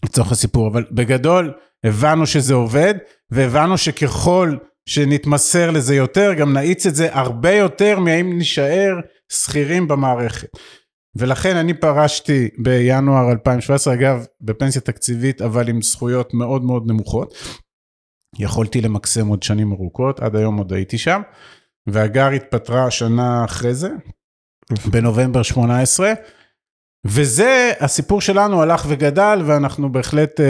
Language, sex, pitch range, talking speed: Hebrew, male, 115-145 Hz, 120 wpm